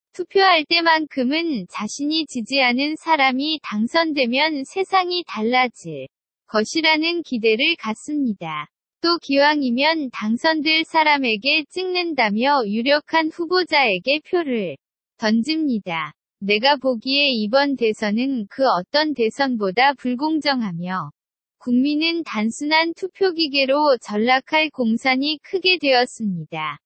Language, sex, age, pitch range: Korean, female, 20-39, 225-310 Hz